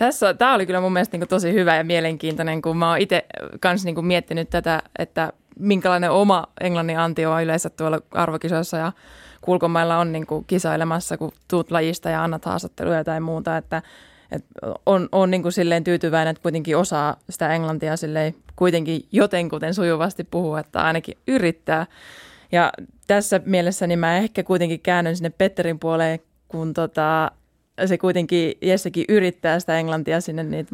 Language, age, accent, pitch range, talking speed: Finnish, 20-39, native, 160-180 Hz, 155 wpm